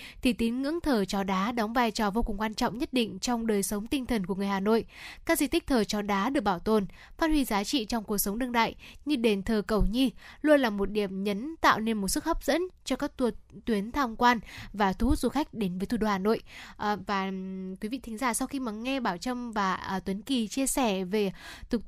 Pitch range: 205-255 Hz